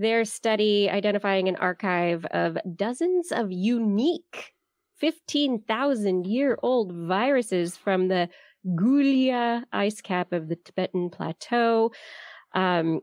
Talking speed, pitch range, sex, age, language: 95 wpm, 170-225 Hz, female, 20-39, English